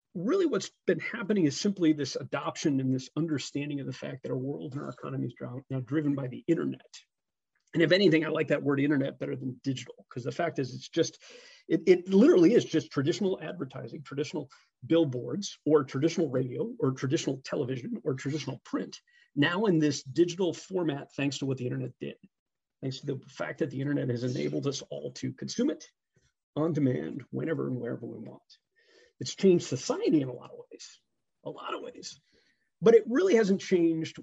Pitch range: 140-195 Hz